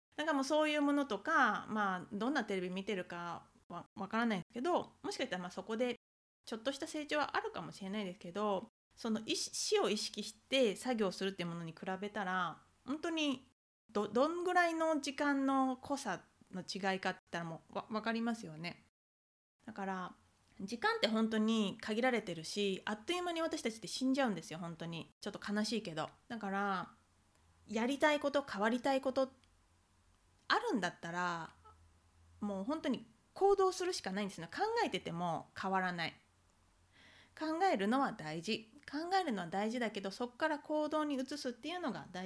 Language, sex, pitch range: Japanese, female, 180-265 Hz